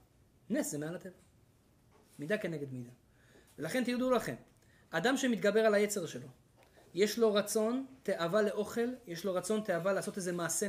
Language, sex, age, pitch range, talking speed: Hebrew, male, 30-49, 140-230 Hz, 150 wpm